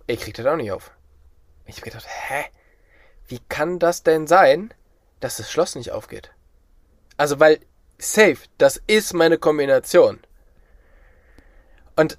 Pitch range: 135-175 Hz